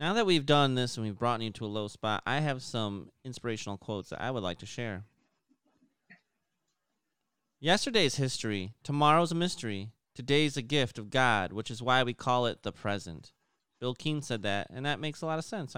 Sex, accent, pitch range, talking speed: male, American, 105-140 Hz, 200 wpm